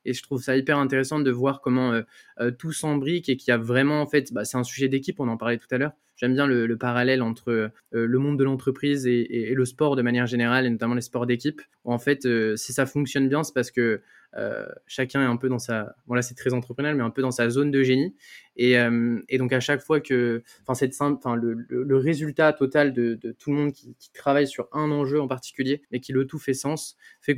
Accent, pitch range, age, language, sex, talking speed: French, 125-145 Hz, 20-39, French, male, 270 wpm